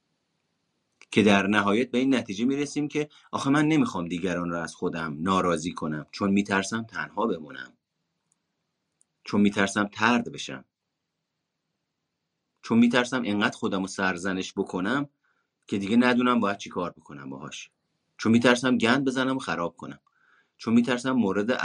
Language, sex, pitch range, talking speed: Persian, male, 90-125 Hz, 140 wpm